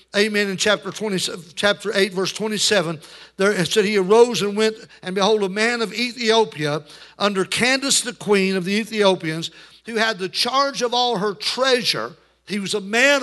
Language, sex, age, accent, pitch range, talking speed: English, male, 60-79, American, 190-225 Hz, 180 wpm